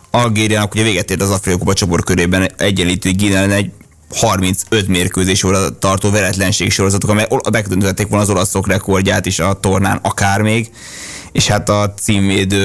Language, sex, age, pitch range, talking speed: Hungarian, male, 20-39, 95-105 Hz, 160 wpm